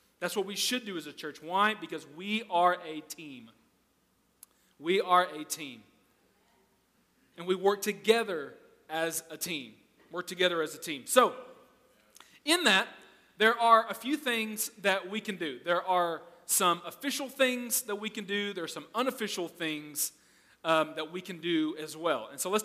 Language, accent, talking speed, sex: English, American, 175 wpm, male